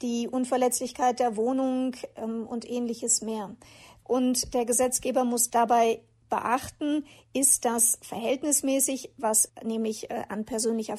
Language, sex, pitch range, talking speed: German, female, 225-255 Hz, 115 wpm